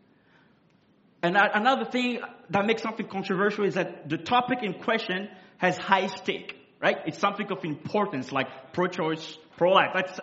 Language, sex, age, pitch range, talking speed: English, male, 30-49, 175-210 Hz, 145 wpm